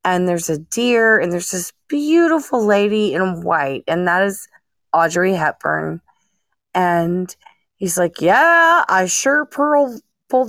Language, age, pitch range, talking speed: English, 30-49, 175-230 Hz, 135 wpm